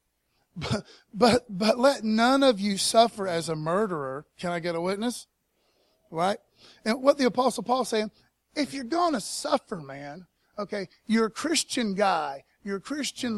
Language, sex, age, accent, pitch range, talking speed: English, male, 30-49, American, 165-225 Hz, 160 wpm